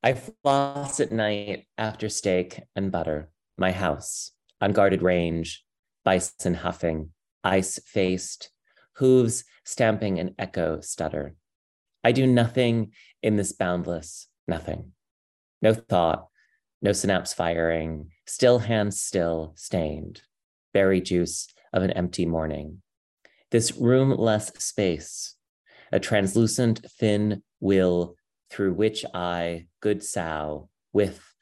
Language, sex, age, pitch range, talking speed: English, male, 30-49, 80-105 Hz, 105 wpm